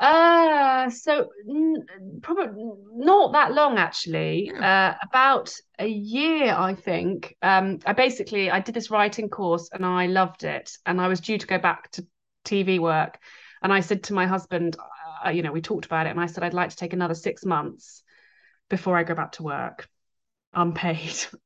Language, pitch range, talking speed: English, 170-205 Hz, 180 wpm